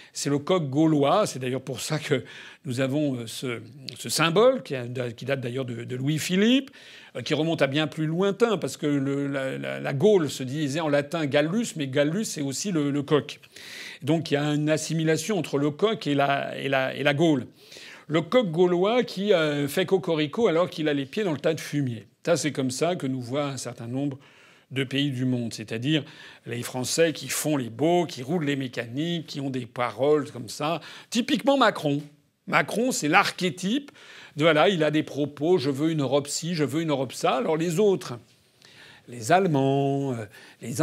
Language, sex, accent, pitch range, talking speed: French, male, French, 135-170 Hz, 205 wpm